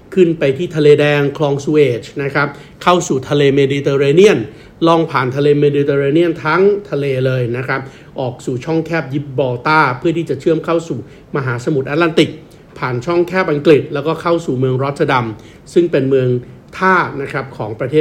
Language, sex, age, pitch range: Thai, male, 60-79, 135-160 Hz